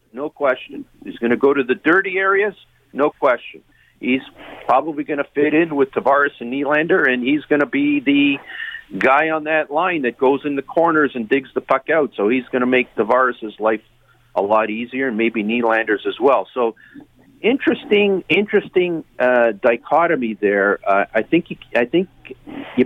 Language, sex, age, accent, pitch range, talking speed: English, male, 50-69, American, 120-165 Hz, 175 wpm